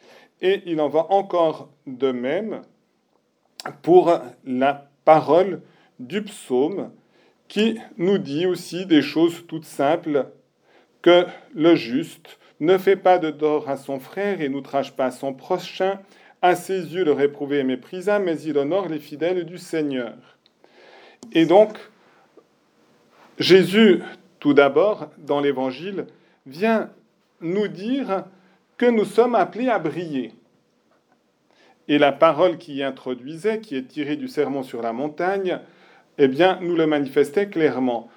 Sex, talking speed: male, 135 wpm